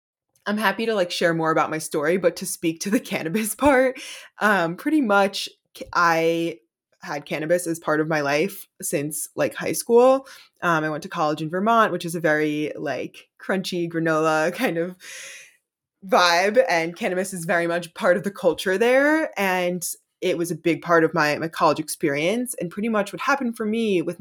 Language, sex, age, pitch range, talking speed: English, female, 20-39, 160-200 Hz, 190 wpm